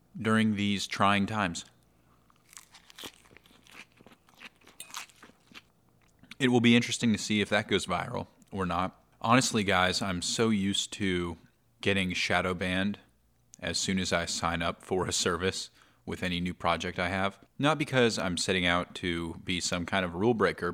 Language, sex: English, male